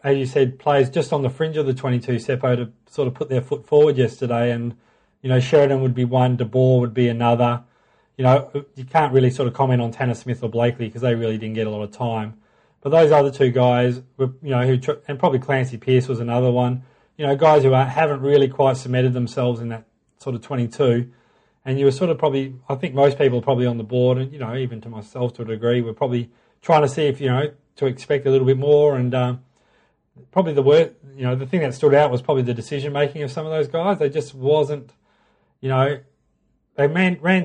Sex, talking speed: male, 240 wpm